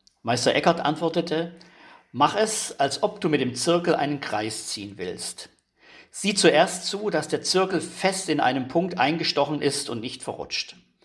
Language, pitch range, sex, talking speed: German, 125-170 Hz, male, 165 wpm